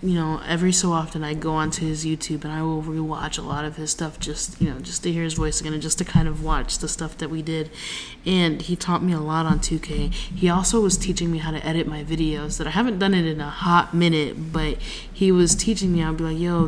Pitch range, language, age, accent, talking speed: 160-190 Hz, English, 20-39, American, 270 wpm